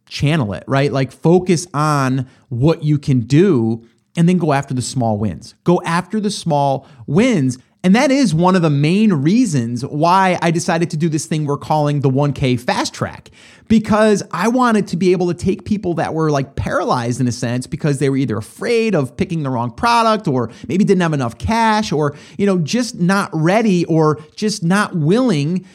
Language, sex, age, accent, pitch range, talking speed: English, male, 30-49, American, 145-200 Hz, 200 wpm